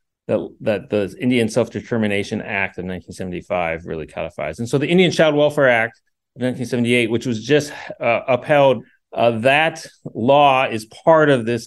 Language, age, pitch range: English, 40-59, 105-130 Hz